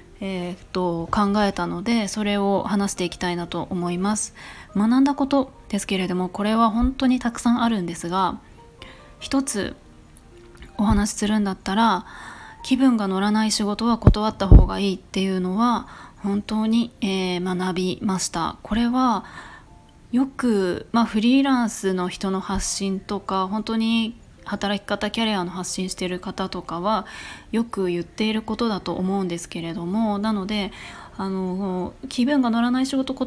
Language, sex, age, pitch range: Japanese, female, 20-39, 185-230 Hz